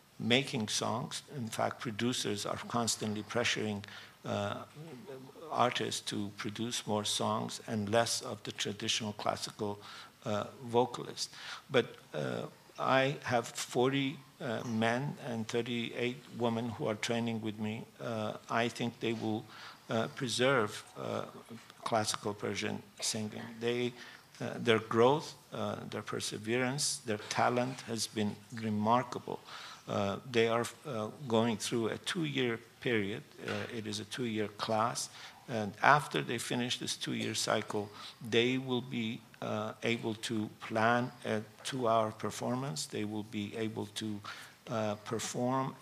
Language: English